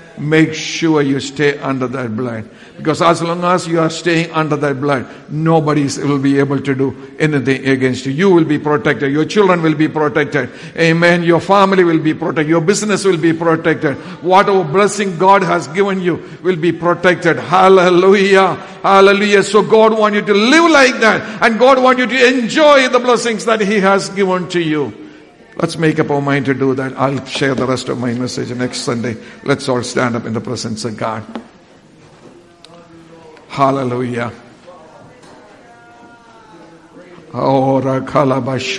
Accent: Indian